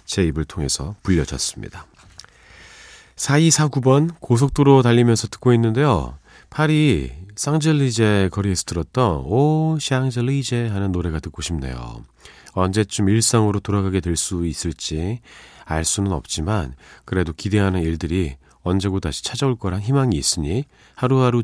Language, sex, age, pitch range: Korean, male, 40-59, 80-120 Hz